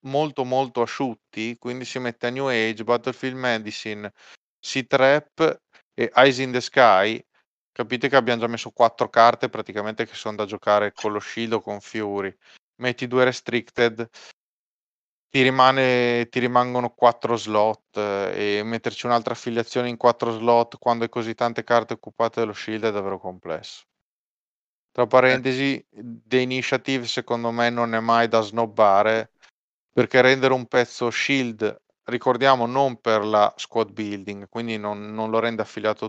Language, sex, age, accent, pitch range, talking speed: Italian, male, 30-49, native, 110-125 Hz, 150 wpm